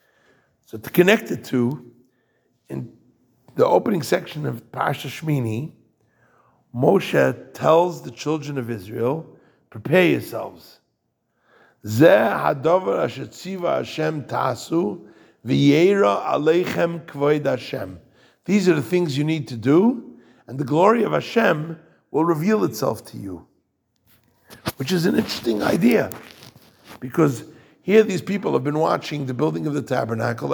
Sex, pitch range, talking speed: male, 120-170 Hz, 105 wpm